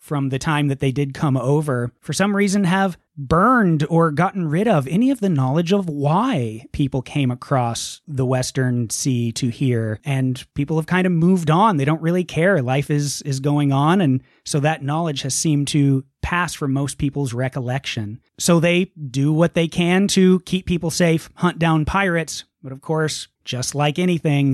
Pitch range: 130-160 Hz